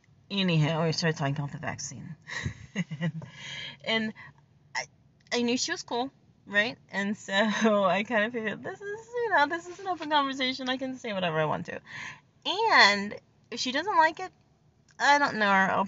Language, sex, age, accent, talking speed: English, female, 30-49, American, 185 wpm